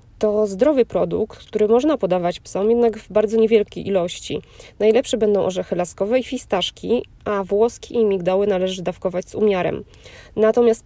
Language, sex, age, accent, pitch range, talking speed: Polish, female, 20-39, native, 190-225 Hz, 150 wpm